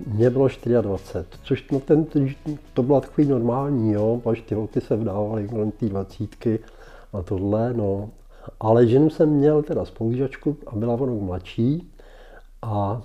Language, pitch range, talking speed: Czech, 105-135 Hz, 145 wpm